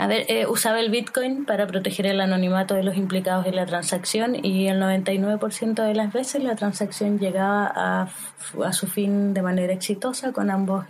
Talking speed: 195 wpm